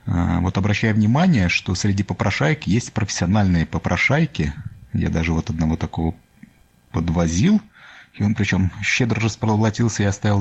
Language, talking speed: Russian, 125 wpm